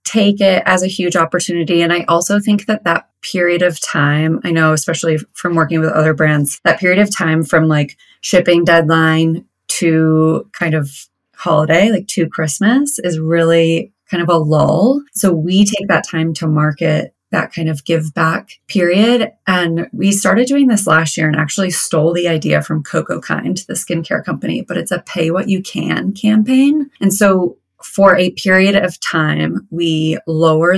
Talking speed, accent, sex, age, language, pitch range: 180 wpm, American, female, 30-49, English, 160-195 Hz